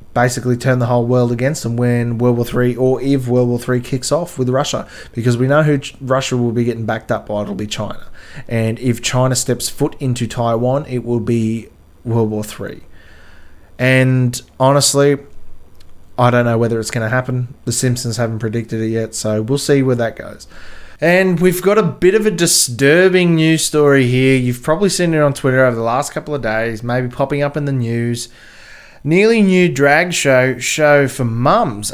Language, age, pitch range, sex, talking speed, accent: English, 20-39, 120-145 Hz, male, 195 wpm, Australian